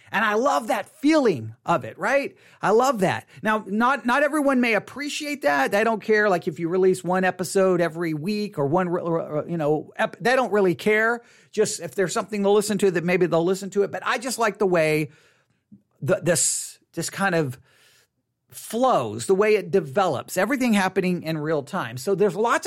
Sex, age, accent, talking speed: male, 40-59, American, 205 wpm